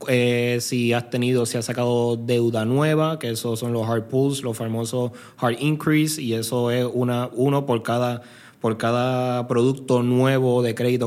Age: 20-39